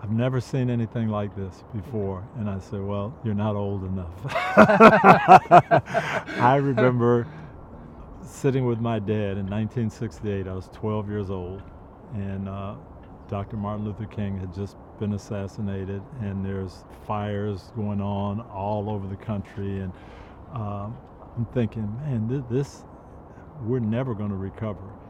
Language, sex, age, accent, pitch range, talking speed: English, male, 50-69, American, 95-110 Hz, 135 wpm